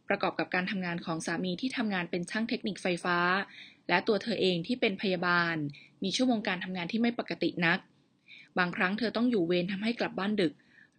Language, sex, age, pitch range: Thai, female, 20-39, 175-220 Hz